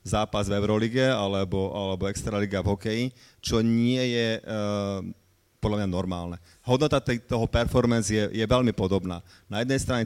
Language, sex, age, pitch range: Slovak, male, 30-49, 100-120 Hz